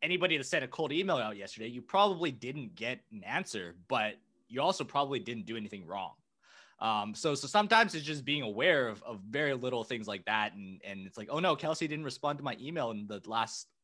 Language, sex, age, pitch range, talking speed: English, male, 20-39, 110-150 Hz, 225 wpm